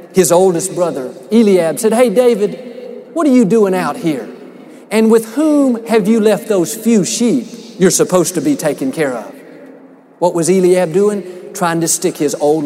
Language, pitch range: English, 165-220 Hz